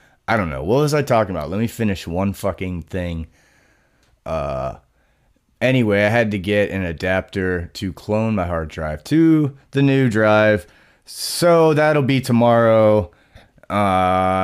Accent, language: American, English